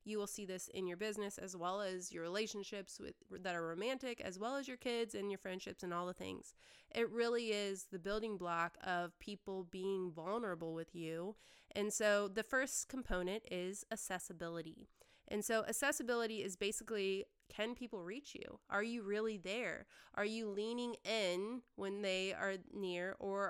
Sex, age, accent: female, 20-39, American